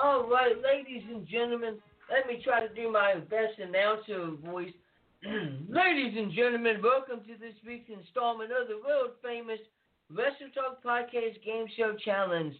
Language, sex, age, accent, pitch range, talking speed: English, male, 50-69, American, 210-260 Hz, 145 wpm